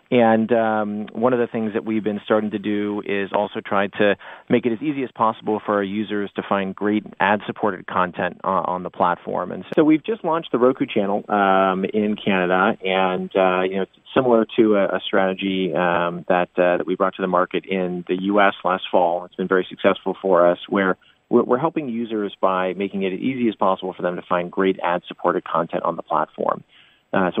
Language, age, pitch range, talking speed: English, 30-49, 90-110 Hz, 210 wpm